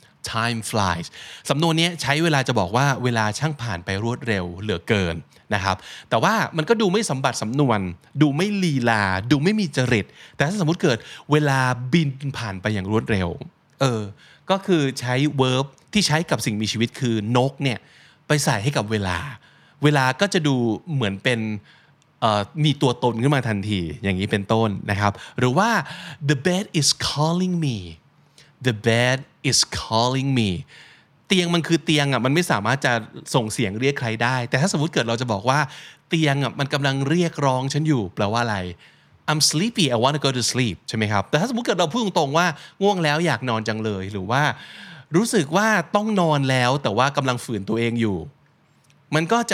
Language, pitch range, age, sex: Thai, 115-155 Hz, 20-39, male